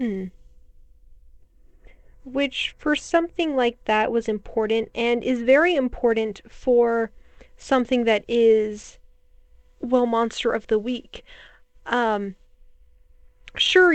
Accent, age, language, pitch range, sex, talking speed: American, 10-29, English, 205-245 Hz, female, 100 wpm